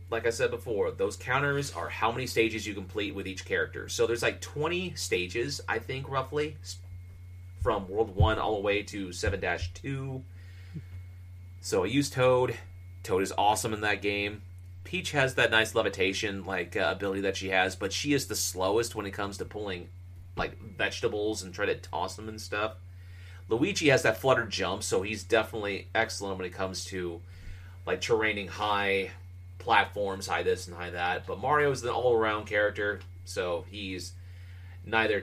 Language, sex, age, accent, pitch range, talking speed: English, male, 30-49, American, 90-105 Hz, 175 wpm